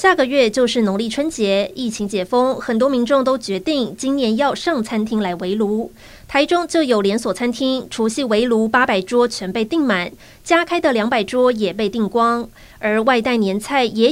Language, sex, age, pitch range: Chinese, female, 20-39, 210-265 Hz